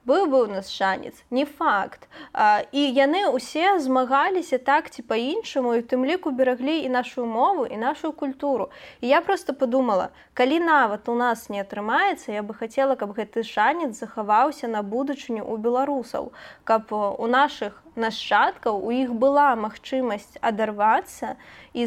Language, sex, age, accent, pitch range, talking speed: Russian, female, 20-39, native, 215-275 Hz, 155 wpm